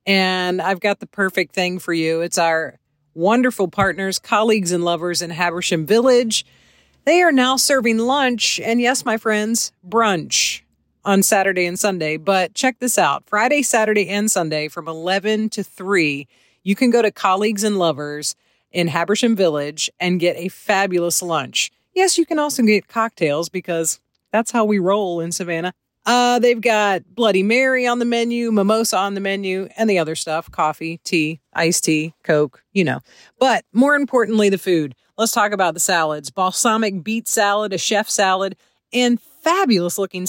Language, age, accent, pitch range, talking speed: English, 40-59, American, 175-235 Hz, 170 wpm